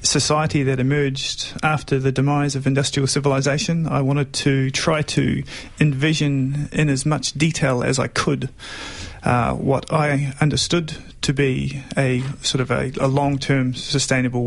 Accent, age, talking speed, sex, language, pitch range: Australian, 30-49, 145 wpm, male, English, 125-145 Hz